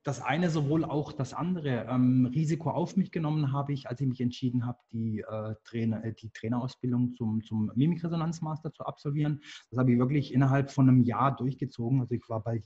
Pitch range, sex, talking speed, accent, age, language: 115-135 Hz, male, 195 wpm, German, 20-39, German